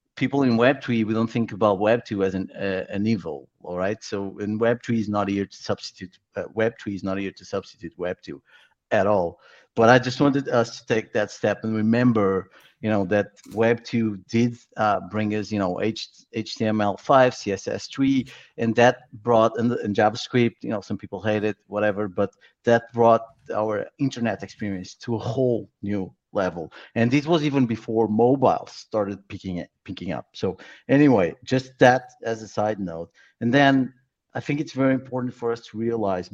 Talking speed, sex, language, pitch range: 180 wpm, male, English, 100-125 Hz